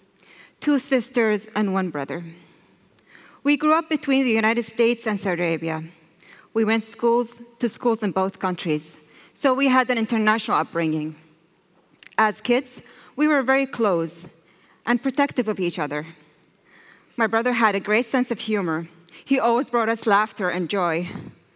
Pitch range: 195-270 Hz